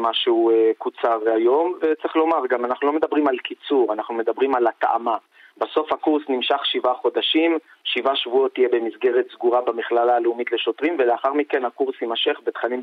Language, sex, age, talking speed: Hebrew, male, 30-49, 155 wpm